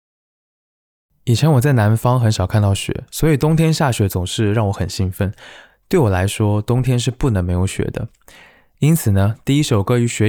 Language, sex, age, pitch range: Chinese, male, 20-39, 100-130 Hz